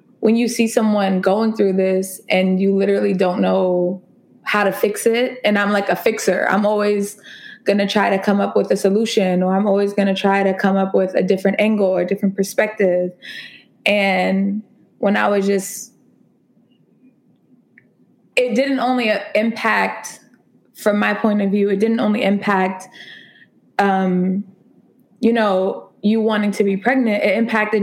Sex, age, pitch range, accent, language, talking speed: female, 20-39, 195-230 Hz, American, English, 165 wpm